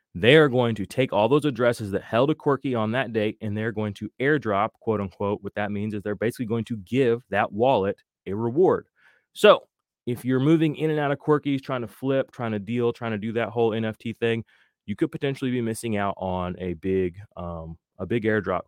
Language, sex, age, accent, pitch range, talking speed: English, male, 30-49, American, 105-130 Hz, 215 wpm